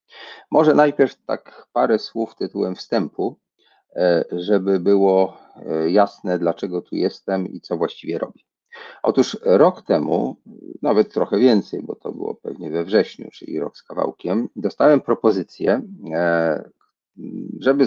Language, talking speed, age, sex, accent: Polish, 120 wpm, 40-59, male, native